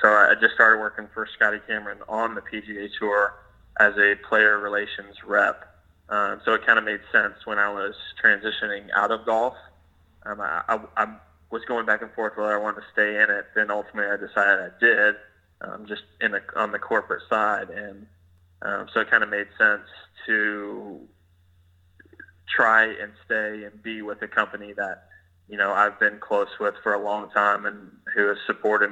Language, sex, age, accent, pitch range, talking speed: English, male, 20-39, American, 100-105 Hz, 195 wpm